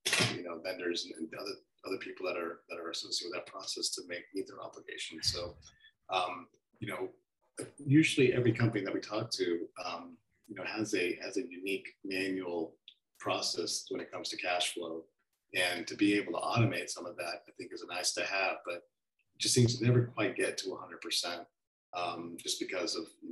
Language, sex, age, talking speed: English, male, 40-59, 205 wpm